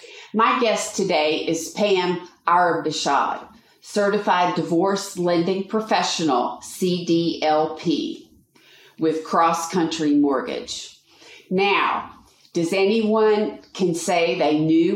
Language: English